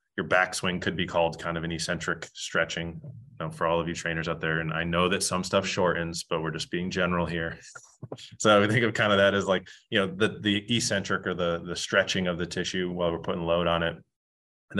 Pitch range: 85-95 Hz